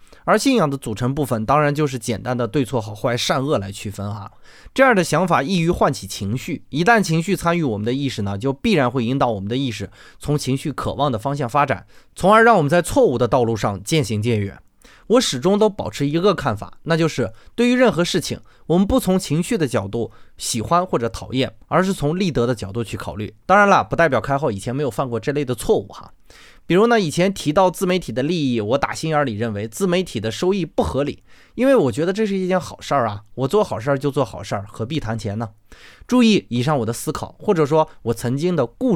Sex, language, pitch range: male, Chinese, 115-175 Hz